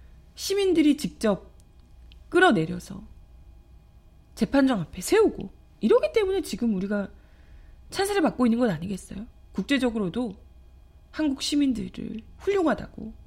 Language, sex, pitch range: Korean, female, 190-310 Hz